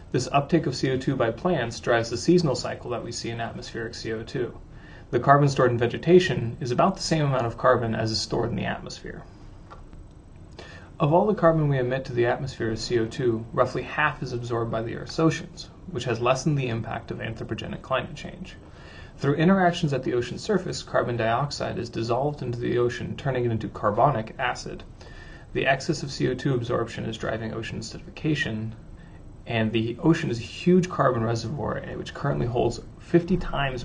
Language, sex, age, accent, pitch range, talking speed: English, male, 30-49, American, 115-145 Hz, 180 wpm